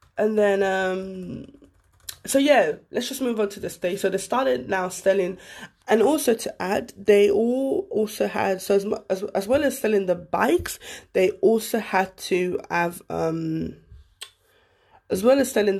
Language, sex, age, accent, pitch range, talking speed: English, female, 20-39, British, 170-210 Hz, 165 wpm